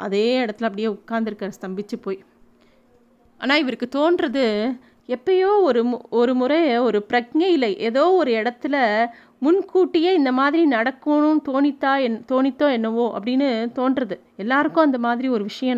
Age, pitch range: 30-49, 220-265 Hz